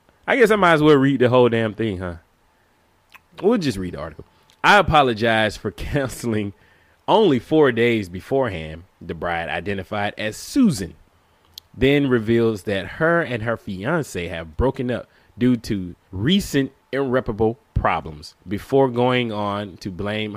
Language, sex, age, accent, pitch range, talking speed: English, male, 20-39, American, 95-130 Hz, 145 wpm